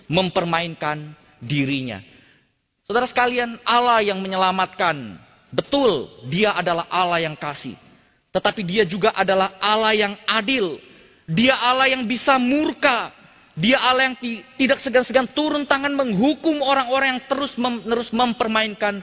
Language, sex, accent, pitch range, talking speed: Indonesian, male, native, 150-235 Hz, 125 wpm